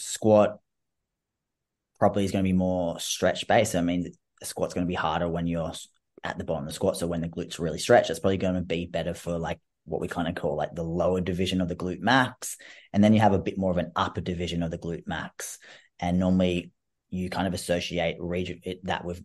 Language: English